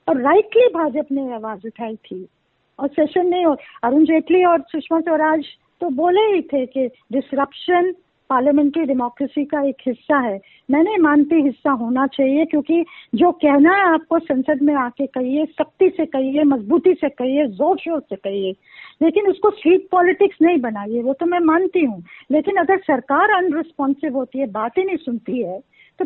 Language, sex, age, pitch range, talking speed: Hindi, female, 50-69, 265-345 Hz, 165 wpm